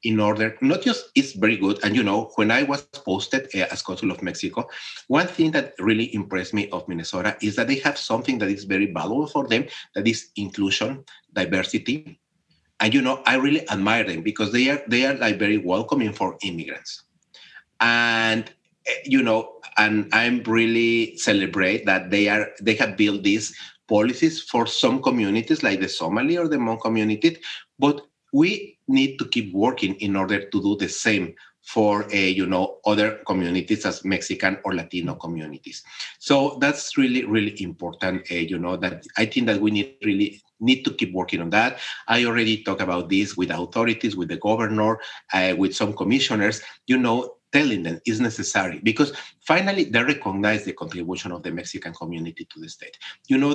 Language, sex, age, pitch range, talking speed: English, male, 30-49, 95-135 Hz, 180 wpm